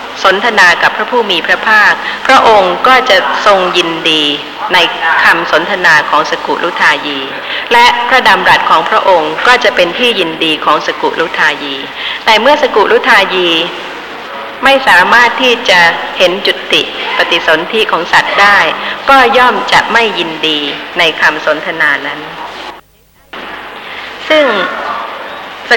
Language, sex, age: Thai, female, 30-49